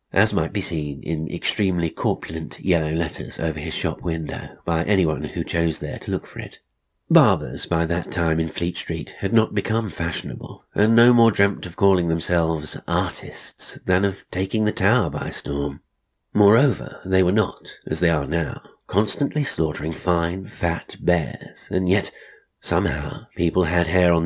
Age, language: 50-69, English